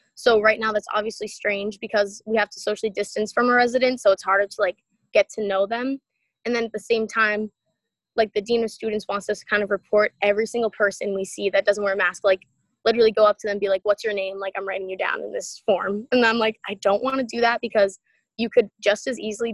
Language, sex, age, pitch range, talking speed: English, female, 20-39, 200-240 Hz, 265 wpm